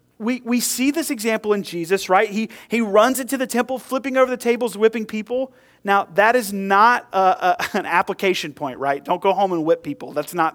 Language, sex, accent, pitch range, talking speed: English, male, American, 165-235 Hz, 215 wpm